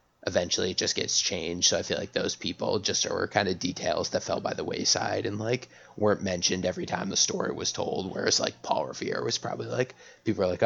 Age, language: 20-39, English